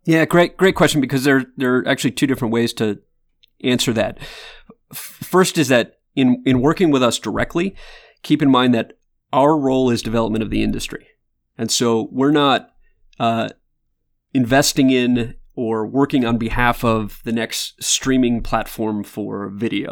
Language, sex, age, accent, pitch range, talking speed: English, male, 30-49, American, 115-140 Hz, 160 wpm